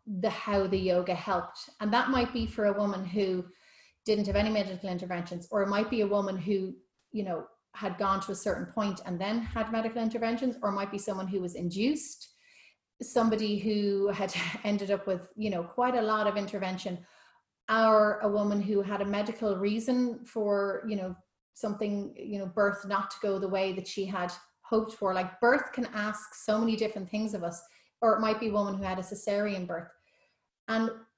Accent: Irish